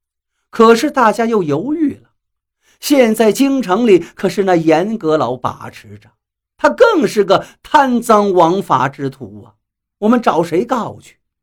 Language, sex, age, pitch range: Chinese, male, 50-69, 175-275 Hz